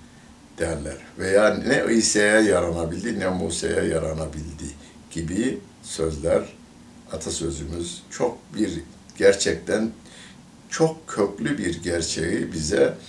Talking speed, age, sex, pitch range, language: 90 wpm, 60-79, male, 80-120 Hz, Turkish